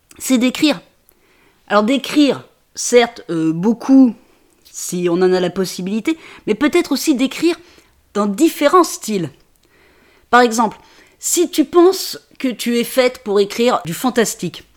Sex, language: female, French